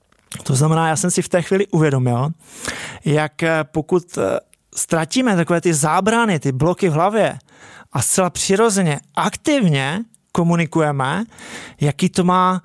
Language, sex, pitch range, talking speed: Czech, male, 155-195 Hz, 130 wpm